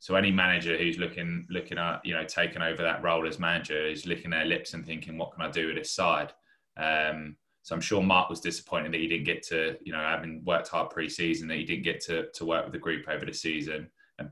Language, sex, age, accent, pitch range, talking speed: English, male, 20-39, British, 80-90 Hz, 250 wpm